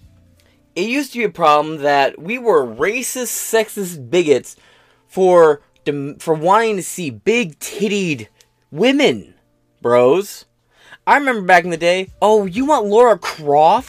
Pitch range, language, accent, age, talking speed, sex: 175-250 Hz, English, American, 20-39, 140 wpm, male